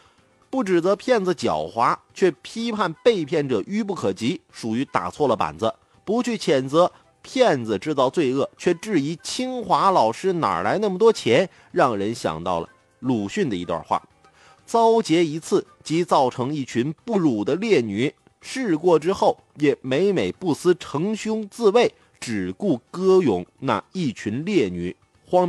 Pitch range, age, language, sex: 150-225 Hz, 30-49, Chinese, male